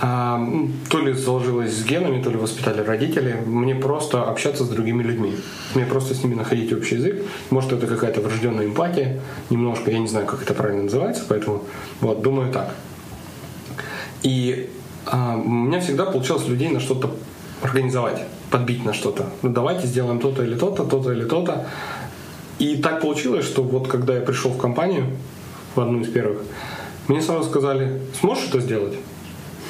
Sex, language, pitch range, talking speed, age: male, Ukrainian, 120-140 Hz, 160 wpm, 20-39